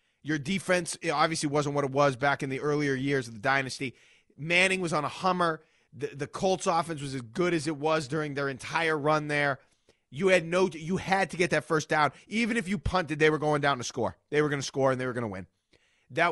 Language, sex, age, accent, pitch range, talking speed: English, male, 30-49, American, 130-165 Hz, 240 wpm